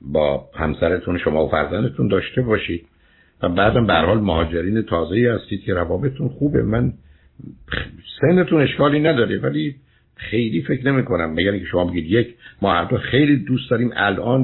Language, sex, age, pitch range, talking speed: Persian, male, 60-79, 85-110 Hz, 150 wpm